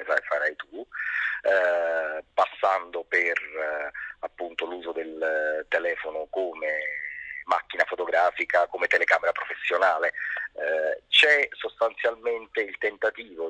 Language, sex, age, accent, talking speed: Italian, male, 30-49, native, 100 wpm